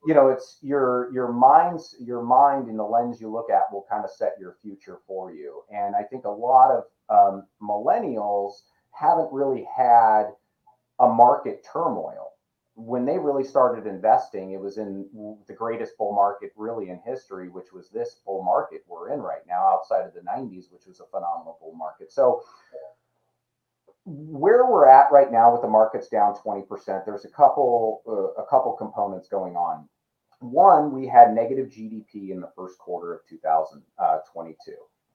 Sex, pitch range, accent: male, 105-155 Hz, American